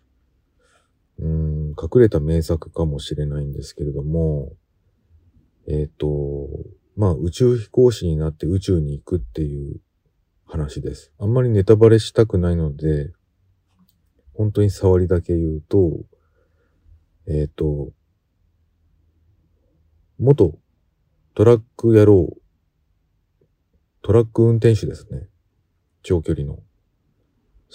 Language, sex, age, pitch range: Japanese, male, 40-59, 75-95 Hz